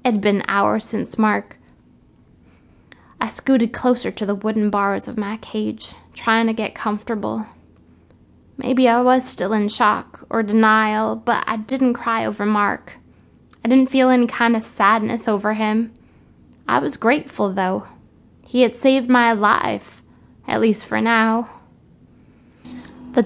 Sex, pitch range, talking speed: female, 200-235 Hz, 145 wpm